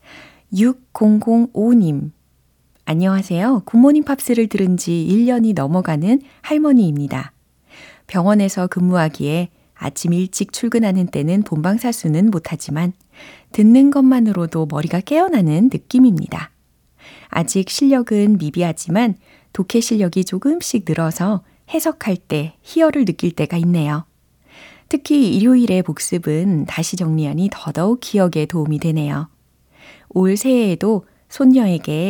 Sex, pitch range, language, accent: female, 160-225 Hz, Korean, native